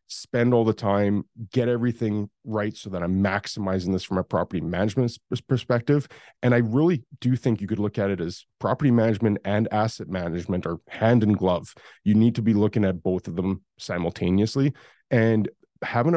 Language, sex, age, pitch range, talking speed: English, male, 30-49, 95-120 Hz, 180 wpm